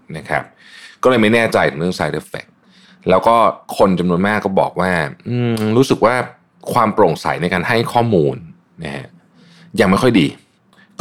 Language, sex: Thai, male